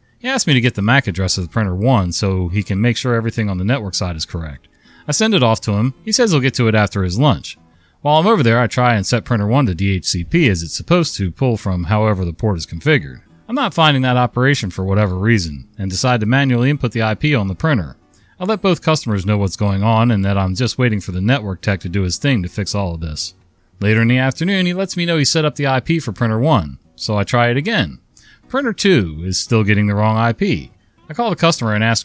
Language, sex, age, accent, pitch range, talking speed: English, male, 40-59, American, 95-135 Hz, 265 wpm